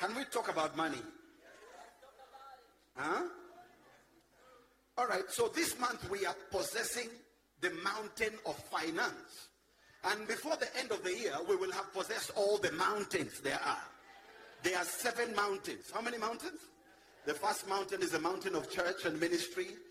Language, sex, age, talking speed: English, male, 50-69, 155 wpm